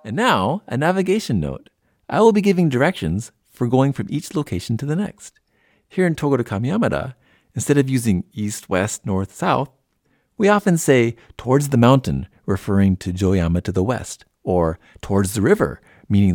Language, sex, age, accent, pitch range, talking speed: English, male, 50-69, American, 95-140 Hz, 170 wpm